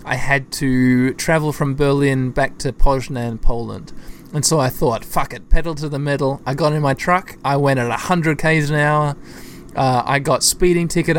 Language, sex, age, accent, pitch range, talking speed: English, male, 20-39, Australian, 130-165 Hz, 200 wpm